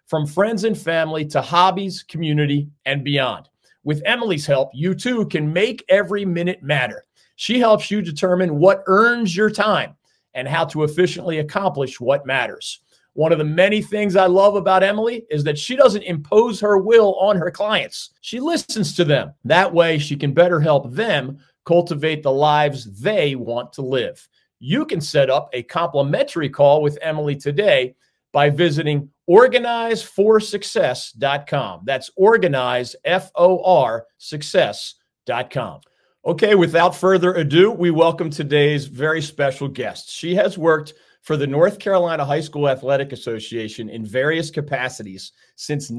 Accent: American